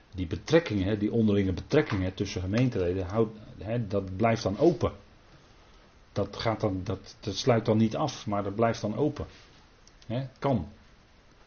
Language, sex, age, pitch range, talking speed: Dutch, male, 40-59, 100-125 Hz, 125 wpm